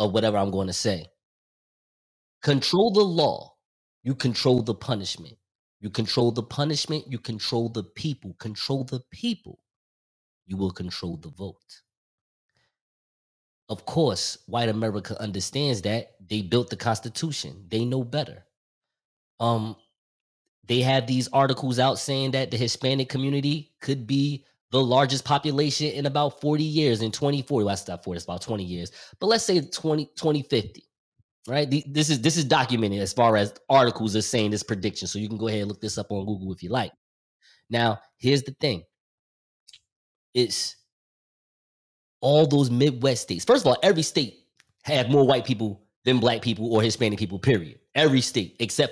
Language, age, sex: English, 20-39, male